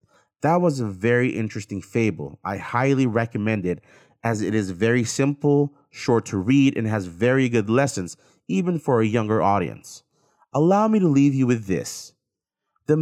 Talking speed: 165 wpm